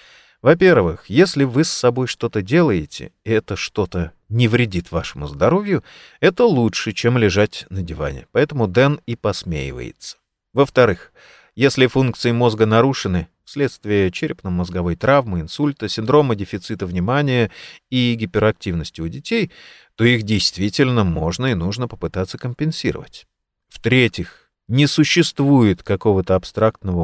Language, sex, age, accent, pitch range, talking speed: Russian, male, 30-49, native, 95-125 Hz, 120 wpm